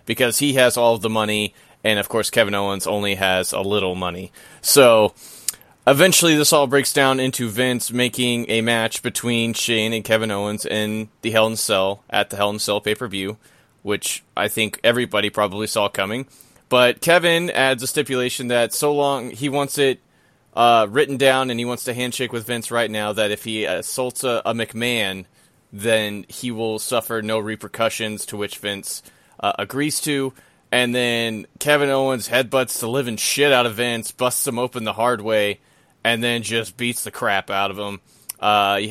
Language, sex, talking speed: English, male, 190 wpm